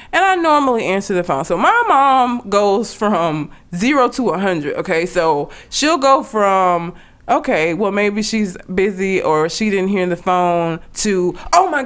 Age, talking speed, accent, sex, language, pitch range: 20-39, 165 wpm, American, female, English, 180-275 Hz